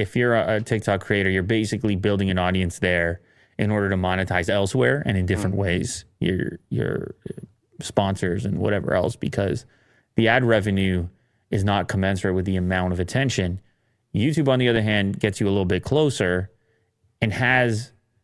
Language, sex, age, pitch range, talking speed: English, male, 30-49, 95-115 Hz, 165 wpm